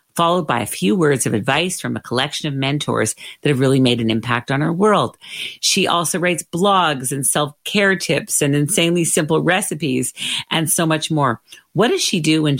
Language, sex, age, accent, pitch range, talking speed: English, female, 50-69, American, 135-175 Hz, 195 wpm